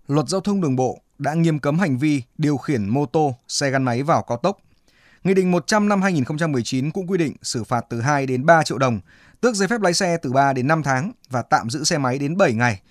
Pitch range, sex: 125-170 Hz, male